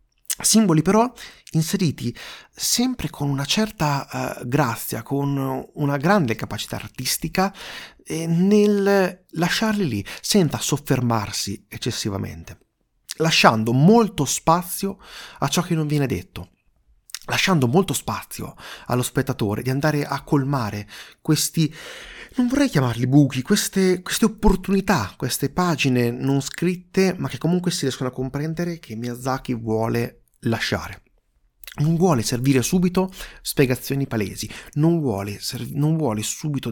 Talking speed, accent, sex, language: 120 wpm, native, male, Italian